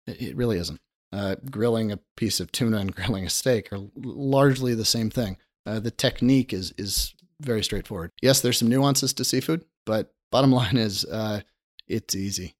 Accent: American